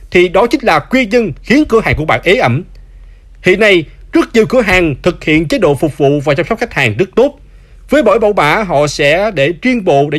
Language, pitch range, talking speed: Vietnamese, 150-220 Hz, 245 wpm